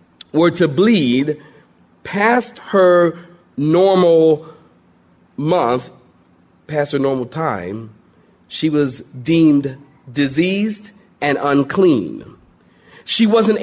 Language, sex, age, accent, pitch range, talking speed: English, male, 40-59, American, 155-225 Hz, 85 wpm